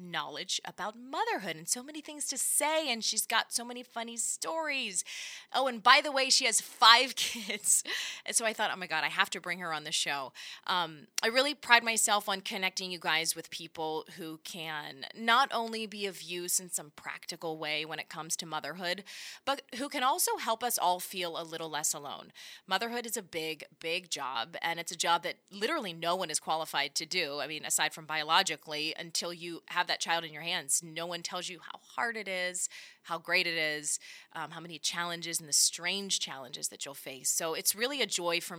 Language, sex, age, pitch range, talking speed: English, female, 20-39, 165-230 Hz, 215 wpm